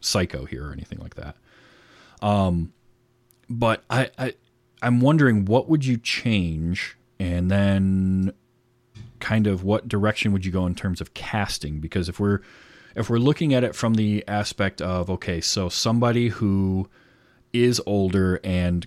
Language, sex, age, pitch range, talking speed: English, male, 30-49, 90-110 Hz, 155 wpm